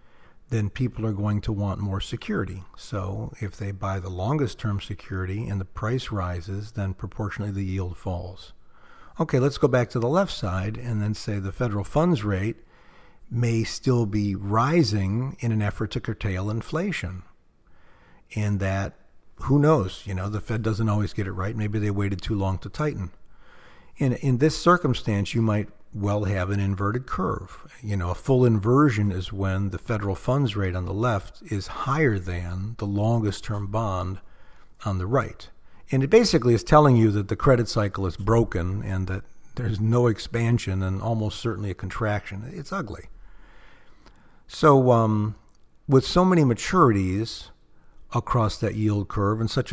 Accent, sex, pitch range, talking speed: American, male, 100-120 Hz, 170 wpm